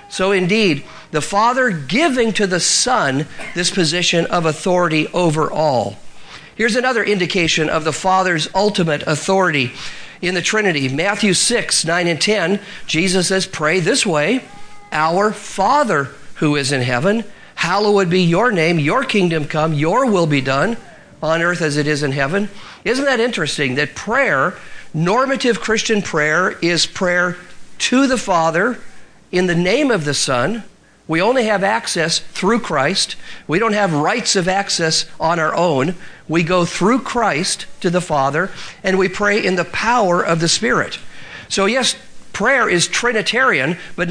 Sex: male